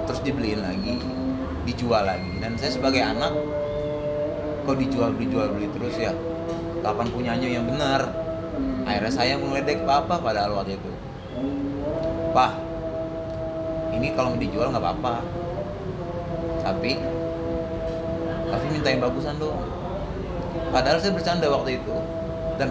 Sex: male